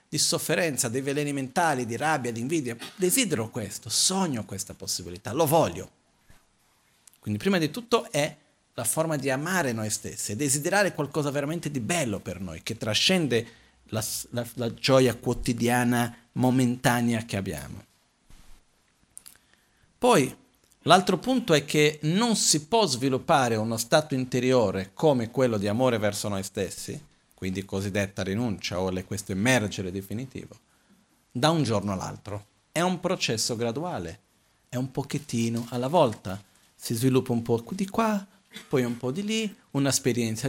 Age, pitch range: 50-69, 110-160 Hz